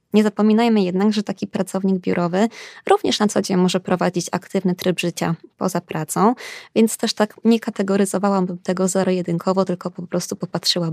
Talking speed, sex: 160 wpm, female